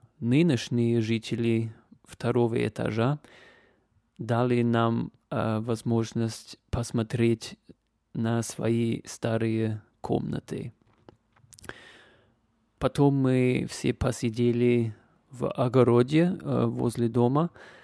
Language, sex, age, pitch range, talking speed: Russian, male, 20-39, 115-130 Hz, 75 wpm